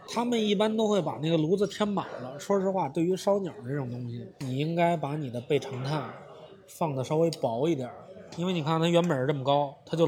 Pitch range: 155-200 Hz